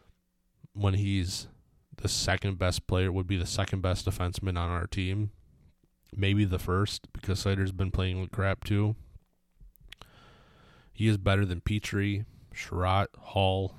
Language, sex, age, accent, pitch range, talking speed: English, male, 20-39, American, 90-105 Hz, 140 wpm